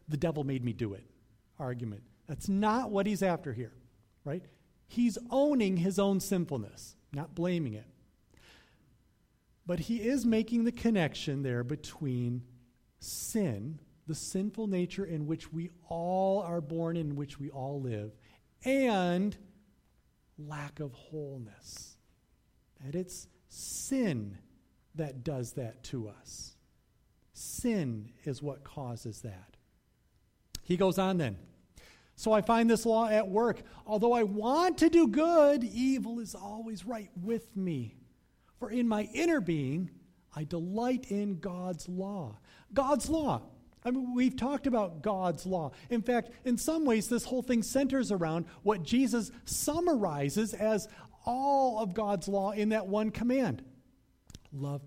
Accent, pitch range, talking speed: American, 140-225 Hz, 140 wpm